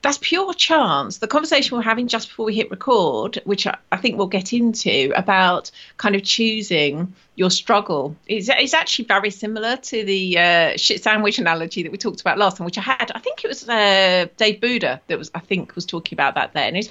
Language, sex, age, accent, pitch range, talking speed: English, female, 40-59, British, 195-265 Hz, 220 wpm